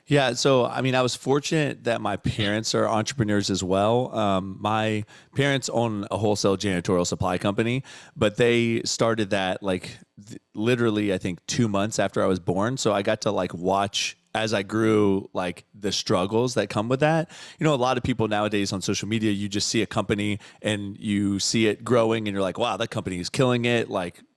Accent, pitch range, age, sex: American, 95-115 Hz, 30-49, male